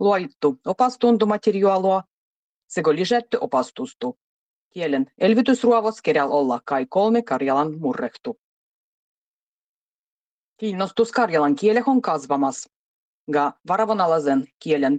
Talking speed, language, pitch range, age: 85 wpm, Finnish, 145-220 Hz, 30-49